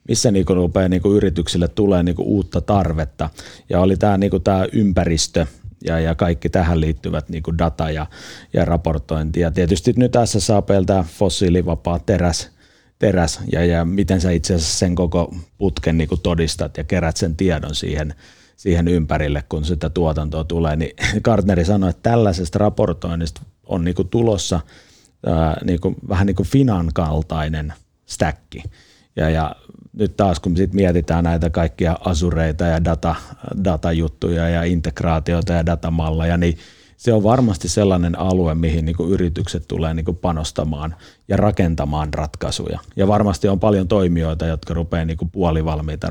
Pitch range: 80-95 Hz